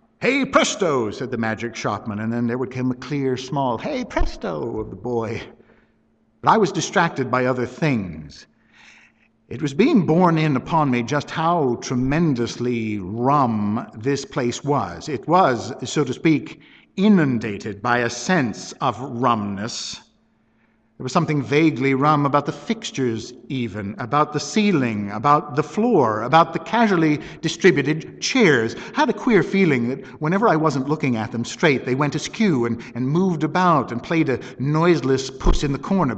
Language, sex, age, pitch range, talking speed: English, male, 60-79, 120-170 Hz, 165 wpm